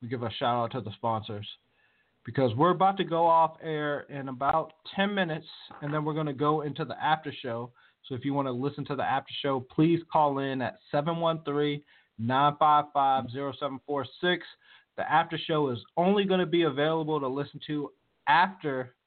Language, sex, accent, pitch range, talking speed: English, male, American, 135-165 Hz, 180 wpm